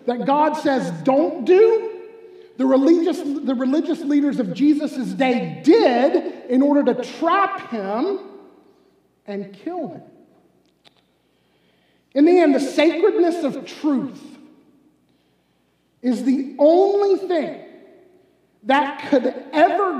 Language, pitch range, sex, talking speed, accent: English, 255-335 Hz, male, 110 wpm, American